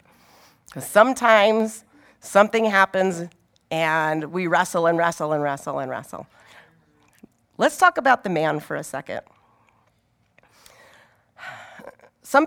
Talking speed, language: 100 wpm, English